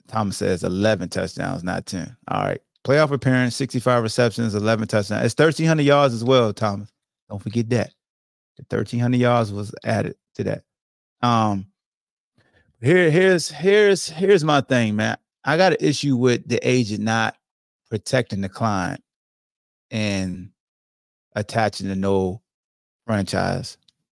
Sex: male